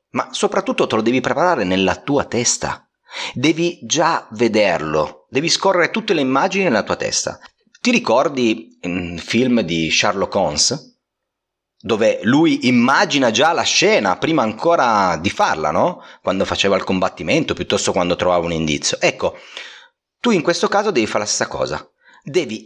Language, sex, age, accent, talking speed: Italian, male, 40-59, native, 155 wpm